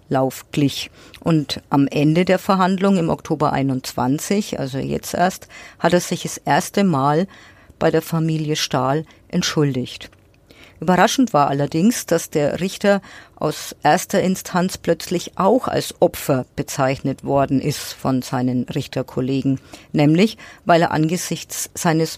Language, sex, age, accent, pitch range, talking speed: German, female, 50-69, German, 135-175 Hz, 125 wpm